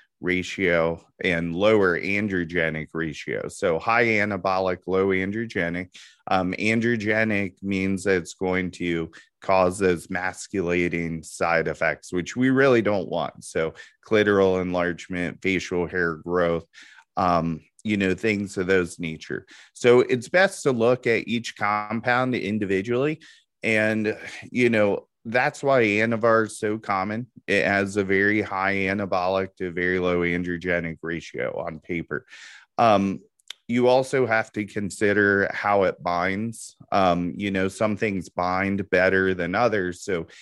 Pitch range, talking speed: 90-110 Hz, 135 wpm